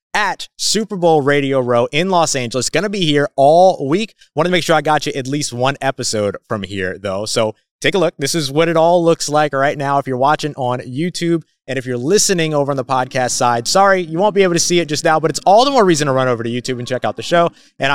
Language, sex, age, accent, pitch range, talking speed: English, male, 30-49, American, 125-175 Hz, 275 wpm